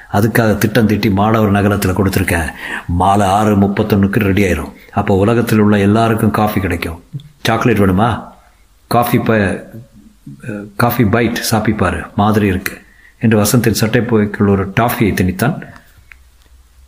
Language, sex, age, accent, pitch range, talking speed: Tamil, male, 50-69, native, 100-125 Hz, 120 wpm